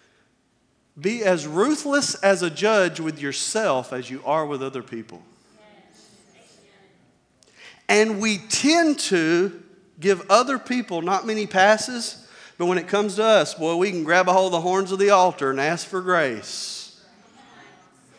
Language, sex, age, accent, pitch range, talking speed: English, male, 40-59, American, 155-230 Hz, 155 wpm